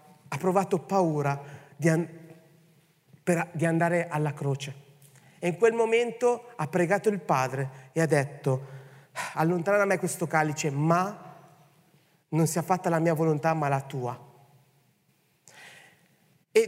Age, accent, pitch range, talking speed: 30-49, native, 145-190 Hz, 135 wpm